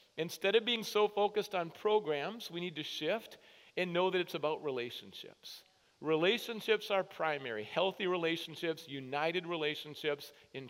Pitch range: 170-235 Hz